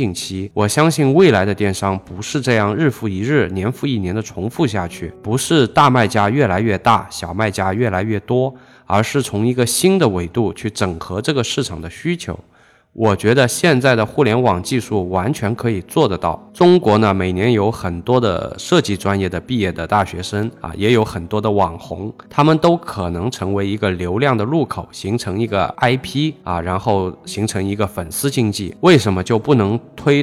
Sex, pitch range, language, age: male, 95-130 Hz, Chinese, 20-39